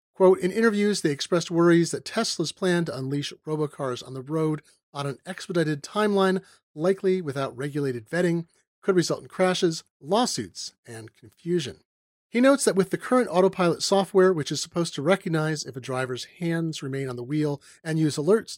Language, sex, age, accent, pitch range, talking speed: English, male, 30-49, American, 140-185 Hz, 175 wpm